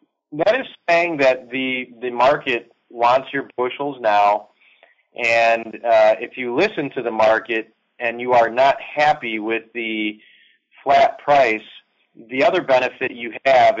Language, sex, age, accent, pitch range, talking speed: English, male, 30-49, American, 110-135 Hz, 145 wpm